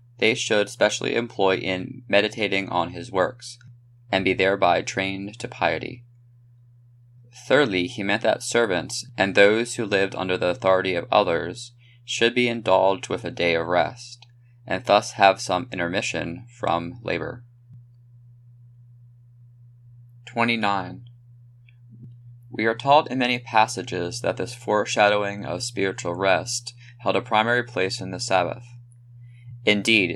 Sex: male